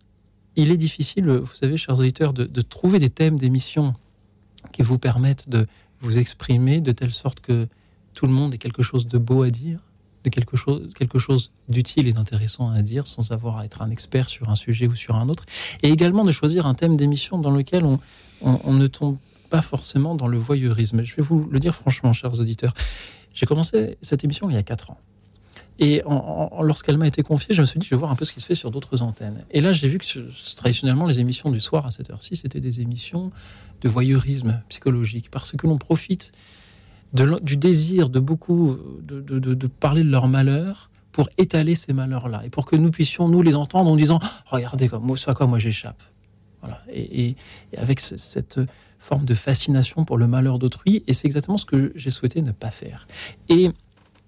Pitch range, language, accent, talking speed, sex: 115-150 Hz, French, French, 210 wpm, male